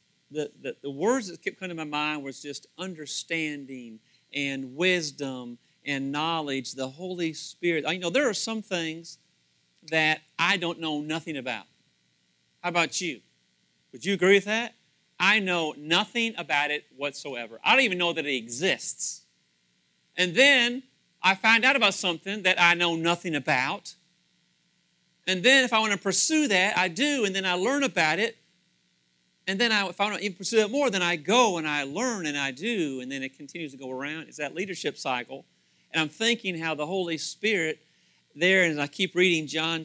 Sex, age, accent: male, 40-59, American